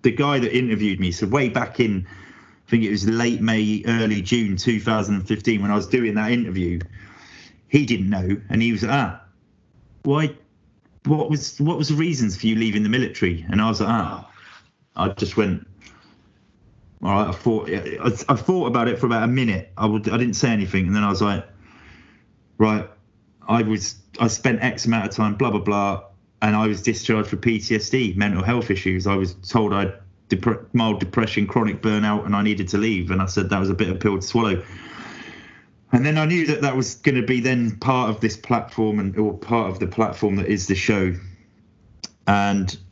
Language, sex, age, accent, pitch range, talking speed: English, male, 30-49, British, 100-115 Hz, 210 wpm